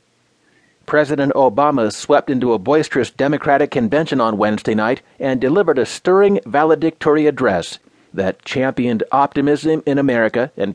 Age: 40-59